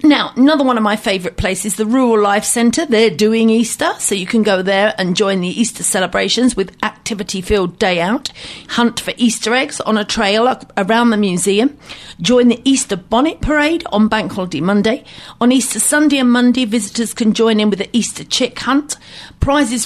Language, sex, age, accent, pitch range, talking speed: English, female, 40-59, British, 195-240 Hz, 185 wpm